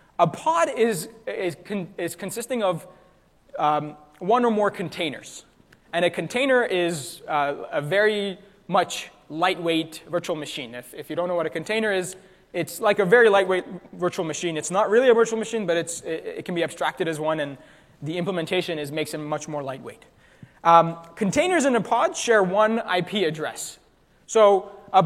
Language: English